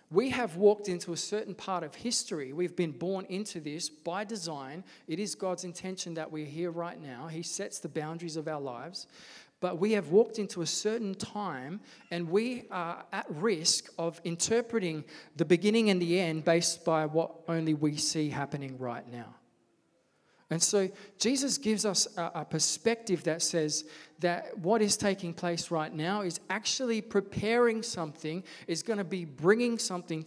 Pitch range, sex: 160-205 Hz, male